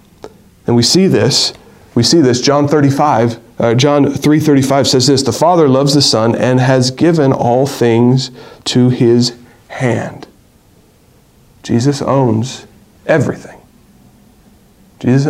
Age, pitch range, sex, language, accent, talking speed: 40-59, 125-165 Hz, male, English, American, 120 wpm